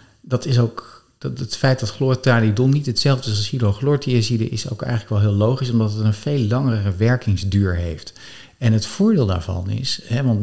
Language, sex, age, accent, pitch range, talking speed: Dutch, male, 50-69, Dutch, 100-125 Hz, 160 wpm